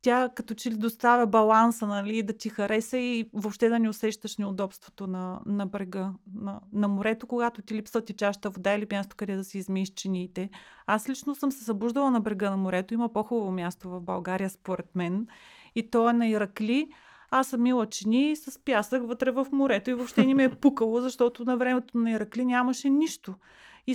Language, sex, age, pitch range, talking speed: Bulgarian, female, 30-49, 205-245 Hz, 200 wpm